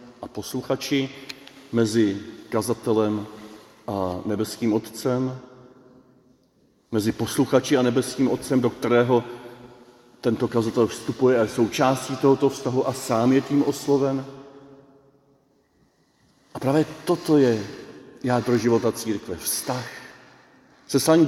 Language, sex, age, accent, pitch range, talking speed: Czech, male, 40-59, native, 125-150 Hz, 100 wpm